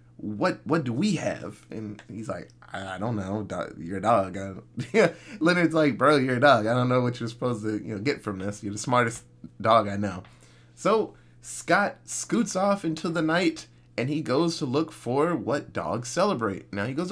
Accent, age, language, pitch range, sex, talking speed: American, 20-39, English, 95-150 Hz, male, 210 wpm